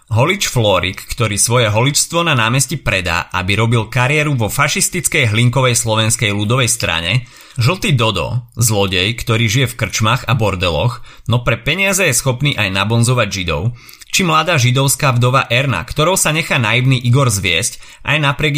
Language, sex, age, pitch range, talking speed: Slovak, male, 30-49, 110-135 Hz, 150 wpm